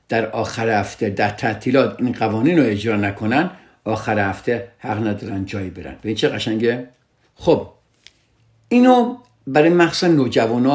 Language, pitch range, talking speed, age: Persian, 110-145 Hz, 140 wpm, 60-79